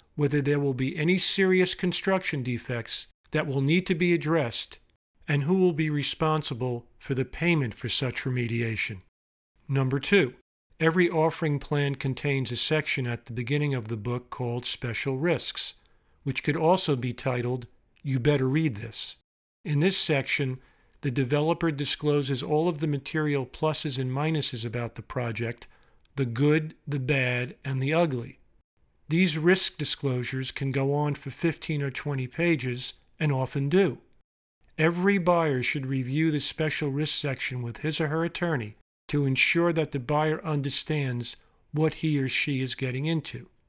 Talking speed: 155 wpm